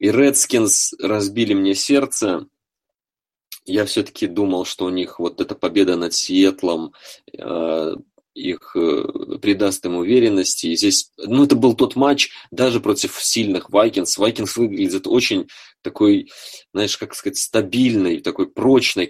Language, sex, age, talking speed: Russian, male, 20-39, 135 wpm